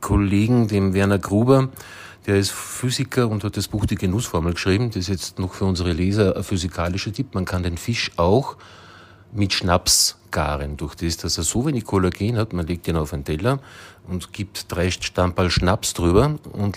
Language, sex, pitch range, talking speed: German, male, 90-110 Hz, 190 wpm